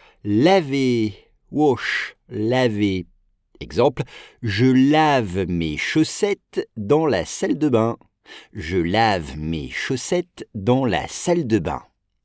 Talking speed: 110 wpm